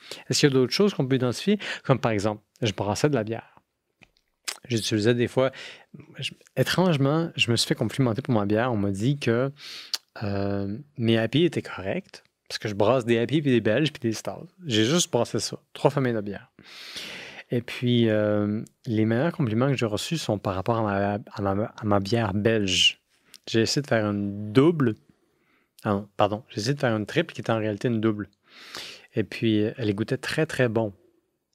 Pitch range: 105-125 Hz